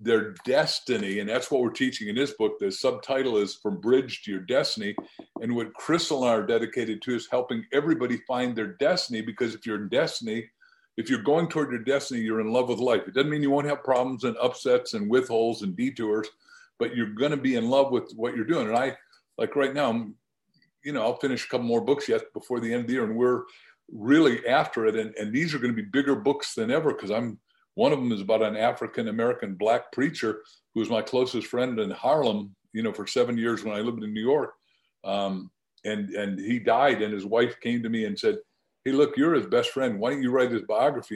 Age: 50-69